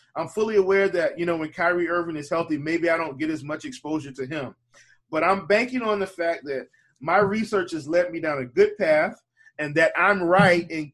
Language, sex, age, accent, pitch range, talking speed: English, male, 20-39, American, 155-195 Hz, 225 wpm